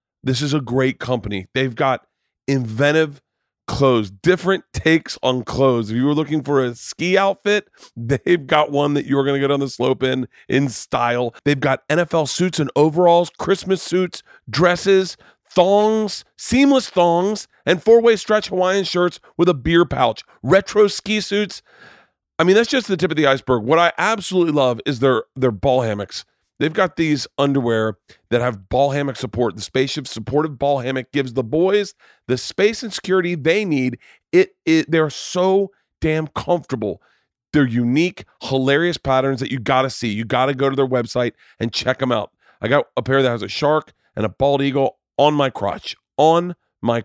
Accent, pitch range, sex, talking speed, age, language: American, 125-175 Hz, male, 180 wpm, 40-59, English